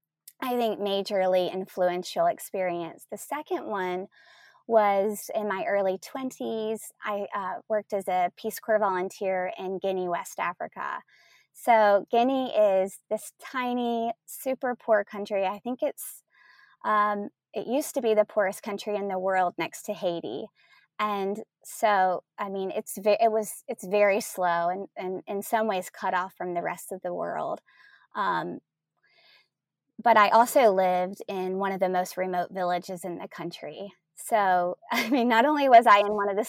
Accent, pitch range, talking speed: American, 185-225 Hz, 165 wpm